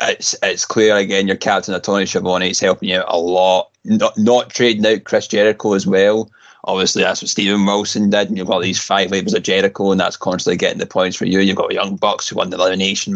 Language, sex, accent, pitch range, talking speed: English, male, British, 95-120 Hz, 240 wpm